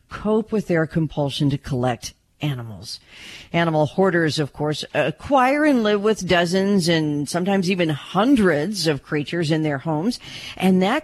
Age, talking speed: 50-69, 145 wpm